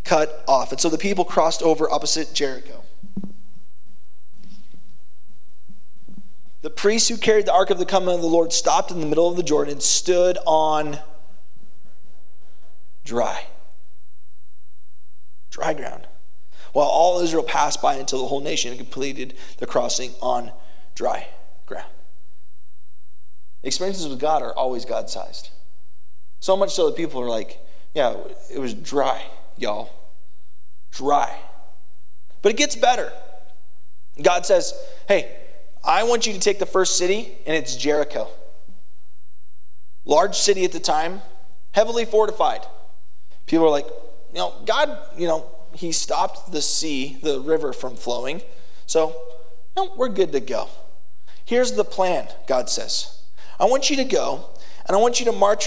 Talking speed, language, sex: 140 wpm, English, male